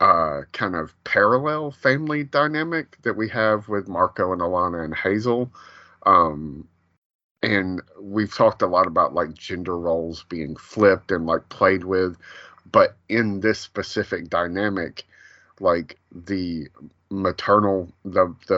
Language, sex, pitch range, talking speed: English, male, 90-120 Hz, 130 wpm